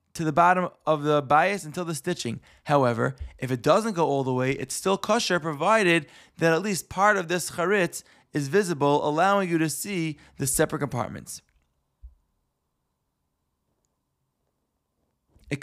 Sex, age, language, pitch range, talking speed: male, 20-39, English, 135-180 Hz, 145 wpm